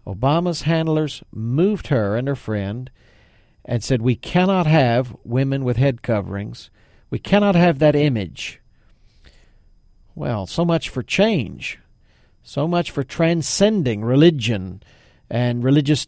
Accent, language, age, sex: American, English, 50-69, male